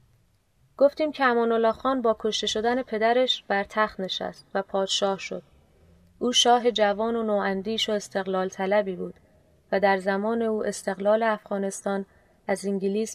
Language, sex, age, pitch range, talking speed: Persian, female, 30-49, 200-225 Hz, 140 wpm